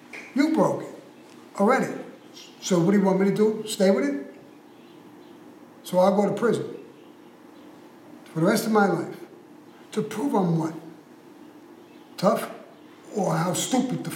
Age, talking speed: 50-69, 150 wpm